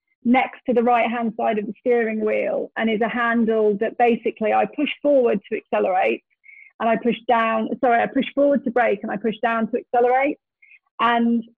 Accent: British